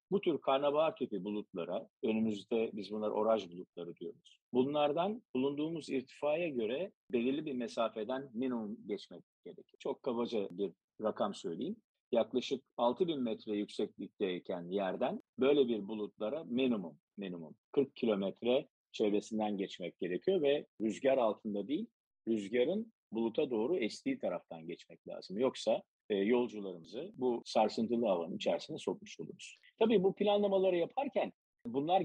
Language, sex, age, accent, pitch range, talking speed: Turkish, male, 50-69, native, 110-150 Hz, 120 wpm